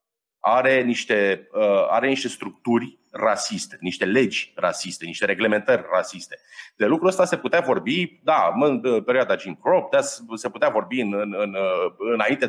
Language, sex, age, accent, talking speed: Romanian, male, 30-49, native, 140 wpm